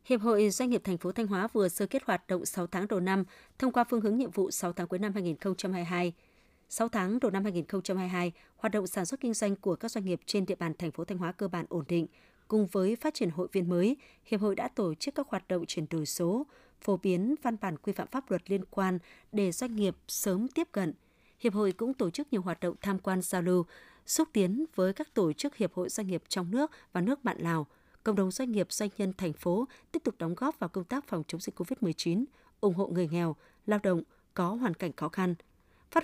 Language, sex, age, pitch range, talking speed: Vietnamese, female, 20-39, 180-230 Hz, 245 wpm